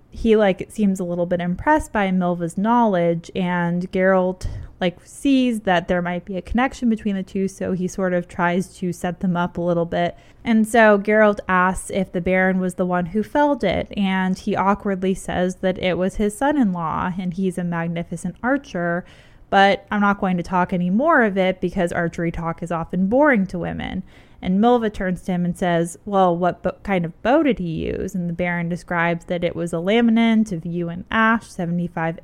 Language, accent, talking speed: English, American, 205 wpm